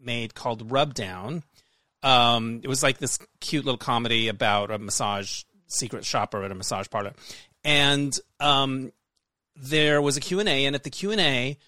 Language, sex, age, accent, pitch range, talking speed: English, male, 30-49, American, 125-165 Hz, 160 wpm